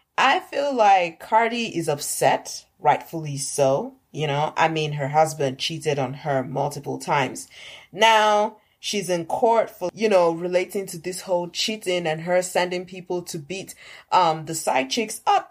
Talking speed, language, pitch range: 165 wpm, English, 155-215 Hz